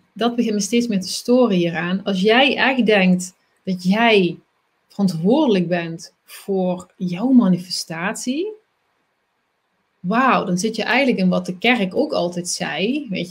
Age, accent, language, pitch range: 30-49, Dutch, Dutch, 190-255 Hz